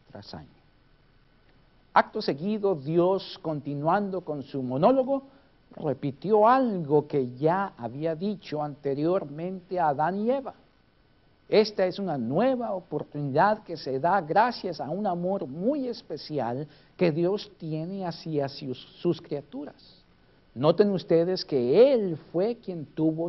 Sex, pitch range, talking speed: male, 135-200 Hz, 120 wpm